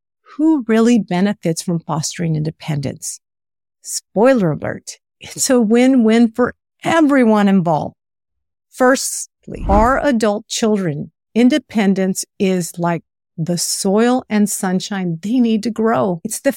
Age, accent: 50-69, American